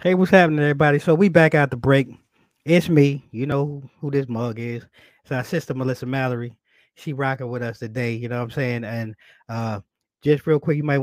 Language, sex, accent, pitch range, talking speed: English, male, American, 110-140 Hz, 220 wpm